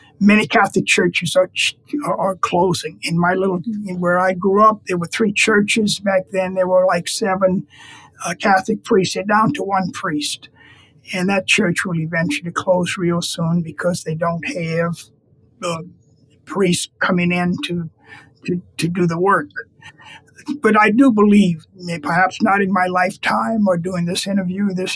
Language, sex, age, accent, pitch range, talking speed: English, male, 50-69, American, 170-195 Hz, 165 wpm